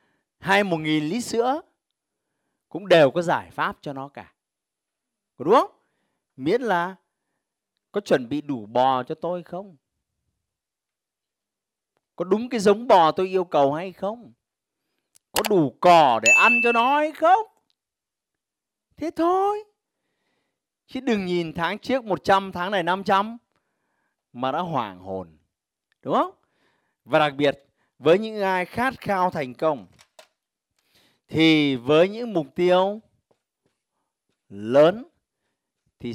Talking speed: 130 wpm